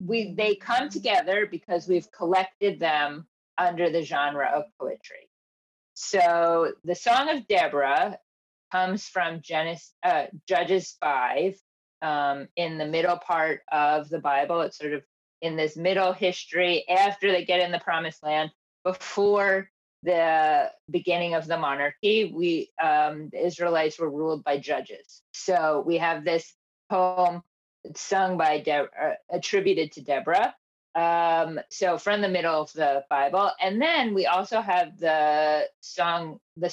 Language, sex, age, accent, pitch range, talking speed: English, female, 30-49, American, 155-190 Hz, 145 wpm